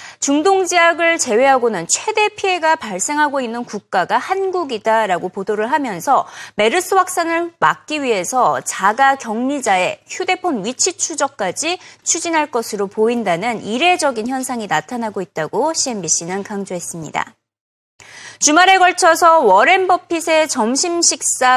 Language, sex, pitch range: Korean, female, 220-335 Hz